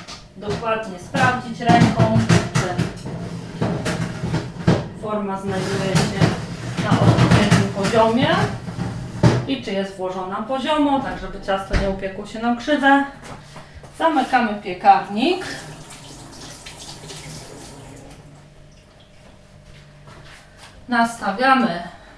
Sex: female